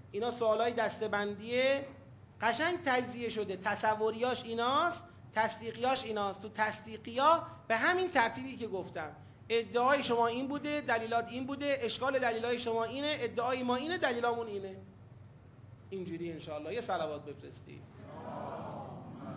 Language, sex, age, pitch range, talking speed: Persian, male, 40-59, 180-265 Hz, 120 wpm